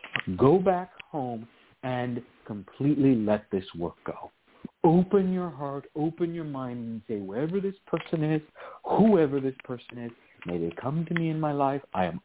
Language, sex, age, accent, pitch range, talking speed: English, male, 50-69, American, 110-170 Hz, 170 wpm